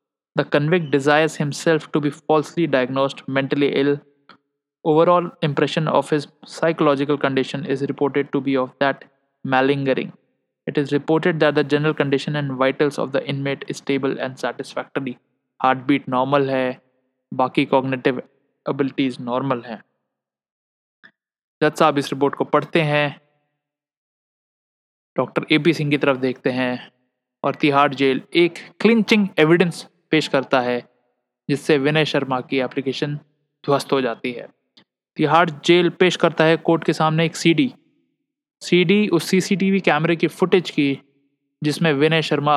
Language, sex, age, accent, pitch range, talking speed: Hindi, male, 20-39, native, 130-155 Hz, 140 wpm